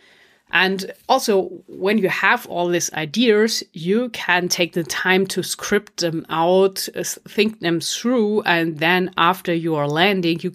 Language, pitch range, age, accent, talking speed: English, 160-190 Hz, 30-49, German, 155 wpm